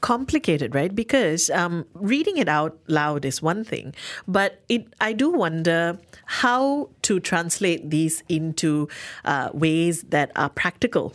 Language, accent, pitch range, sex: English, Indian, 155-200 Hz, female